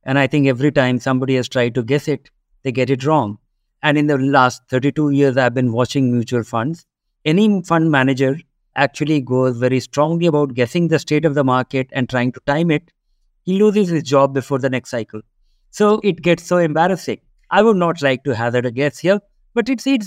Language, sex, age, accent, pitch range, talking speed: English, male, 50-69, Indian, 135-185 Hz, 210 wpm